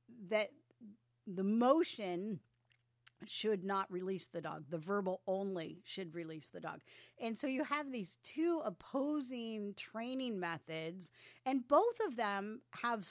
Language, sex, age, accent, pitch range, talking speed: English, female, 40-59, American, 170-220 Hz, 135 wpm